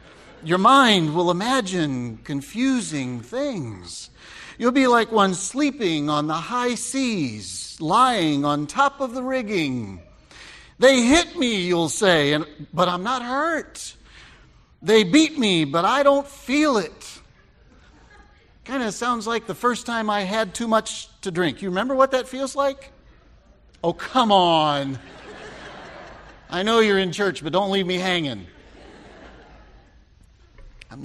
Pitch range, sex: 145-235 Hz, male